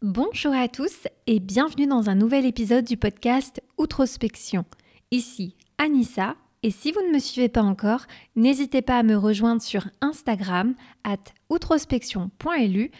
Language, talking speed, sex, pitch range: French, 145 wpm, female, 215-265 Hz